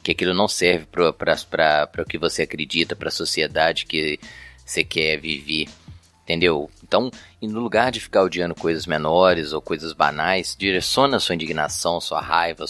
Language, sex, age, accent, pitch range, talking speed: Portuguese, male, 20-39, Brazilian, 80-95 Hz, 160 wpm